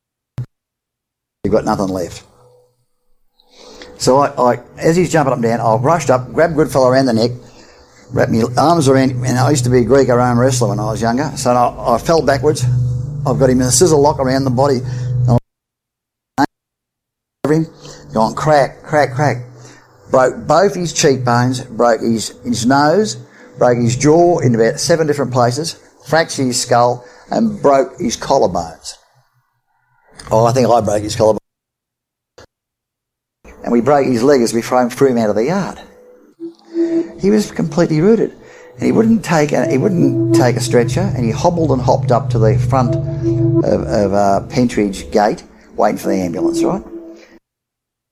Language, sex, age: English, male, 50-69